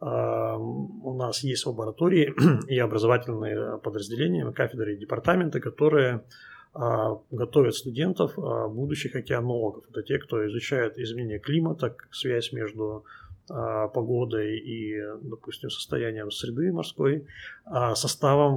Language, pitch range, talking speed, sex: Russian, 110-130 Hz, 95 wpm, male